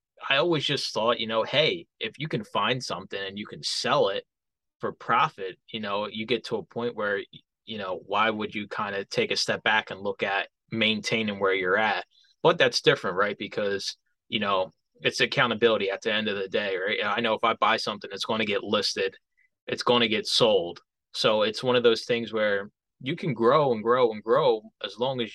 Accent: American